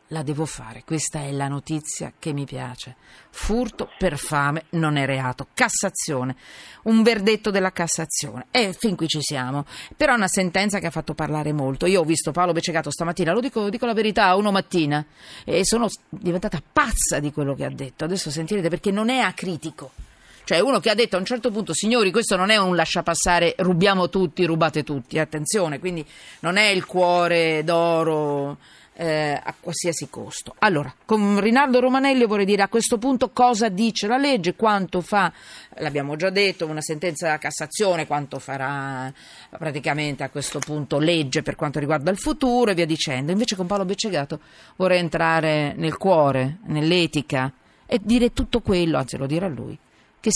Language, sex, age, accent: Italian, female, 40-59, native